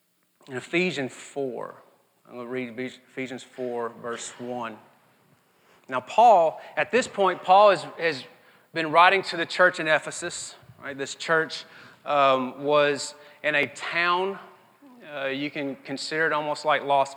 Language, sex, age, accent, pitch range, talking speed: English, male, 30-49, American, 130-160 Hz, 145 wpm